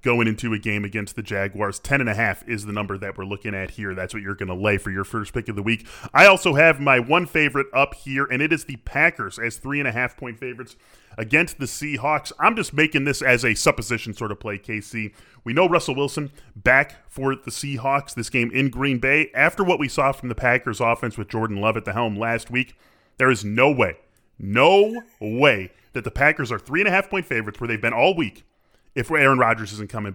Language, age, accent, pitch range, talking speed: English, 20-39, American, 110-140 Hz, 240 wpm